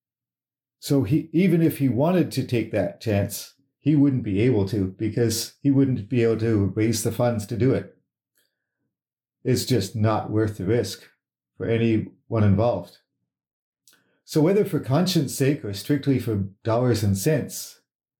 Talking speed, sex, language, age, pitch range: 155 wpm, male, English, 50-69, 115-145 Hz